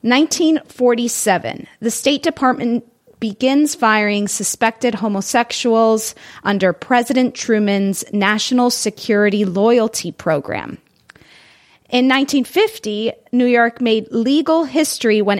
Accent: American